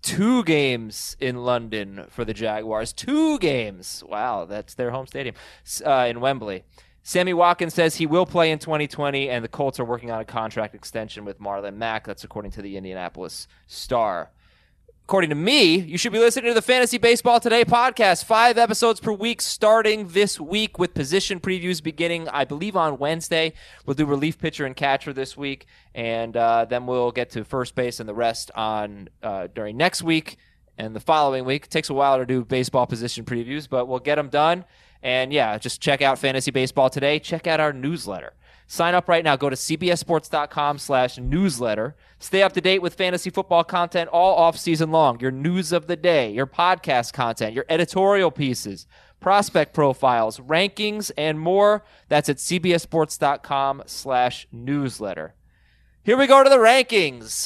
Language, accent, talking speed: English, American, 180 wpm